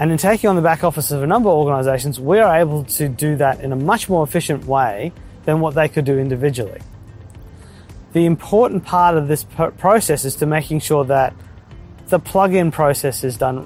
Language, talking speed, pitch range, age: English, 200 wpm, 125-165 Hz, 20-39